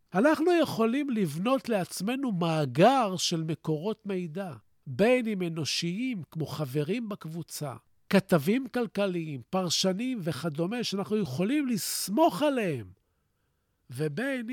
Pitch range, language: 155-235 Hz, Hebrew